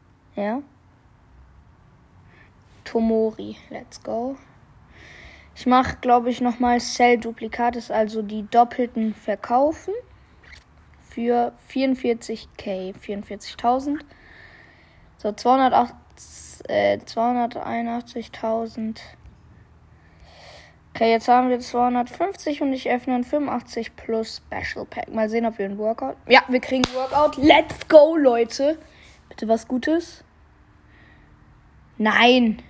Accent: German